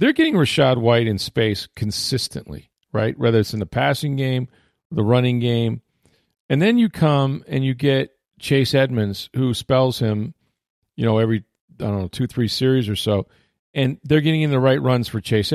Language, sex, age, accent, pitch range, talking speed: English, male, 40-59, American, 110-135 Hz, 190 wpm